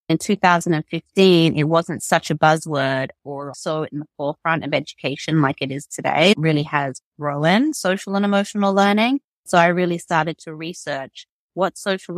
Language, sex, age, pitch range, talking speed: English, female, 30-49, 150-180 Hz, 170 wpm